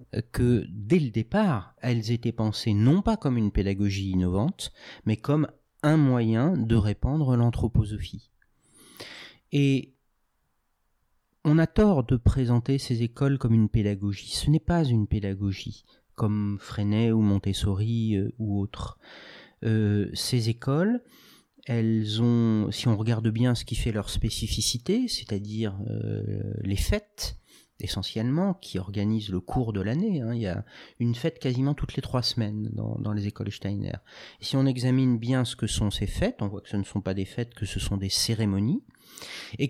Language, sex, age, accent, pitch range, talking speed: French, male, 40-59, French, 105-130 Hz, 160 wpm